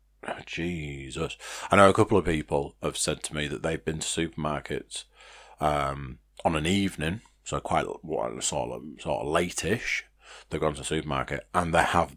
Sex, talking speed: male, 180 wpm